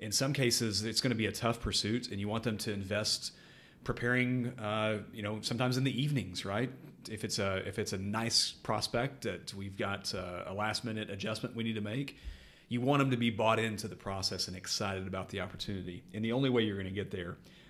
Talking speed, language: 230 wpm, English